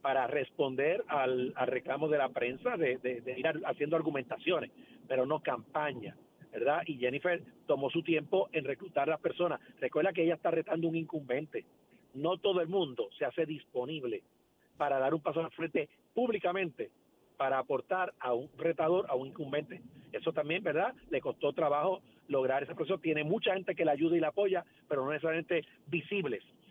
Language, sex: Spanish, male